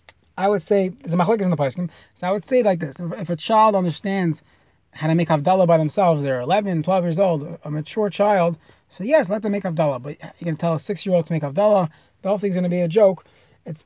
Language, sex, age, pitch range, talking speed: English, male, 20-39, 150-190 Hz, 245 wpm